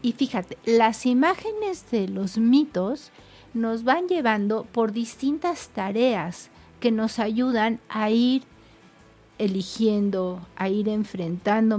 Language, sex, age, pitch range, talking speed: Spanish, female, 50-69, 195-245 Hz, 110 wpm